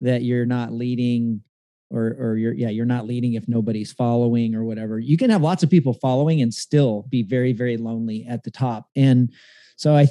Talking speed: 210 wpm